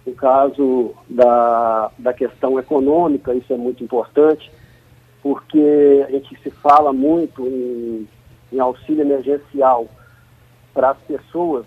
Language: Portuguese